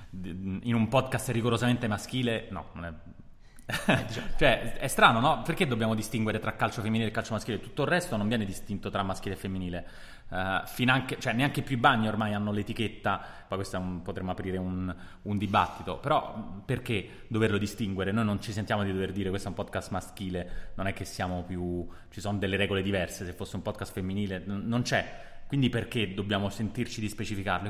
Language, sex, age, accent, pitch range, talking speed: Italian, male, 20-39, native, 100-125 Hz, 190 wpm